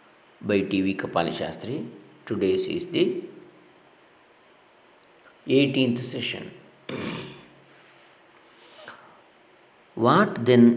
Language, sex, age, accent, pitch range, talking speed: Kannada, male, 50-69, native, 110-135 Hz, 60 wpm